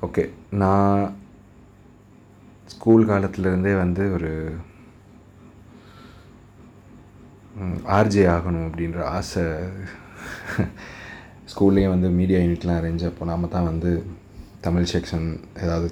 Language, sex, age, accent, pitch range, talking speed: Tamil, male, 30-49, native, 85-100 Hz, 85 wpm